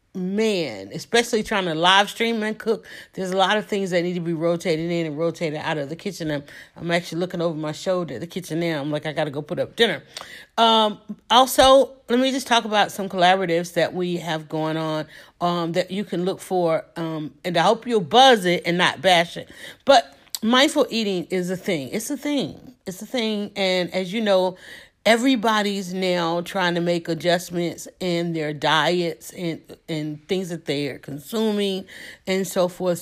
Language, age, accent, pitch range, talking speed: English, 40-59, American, 165-200 Hz, 200 wpm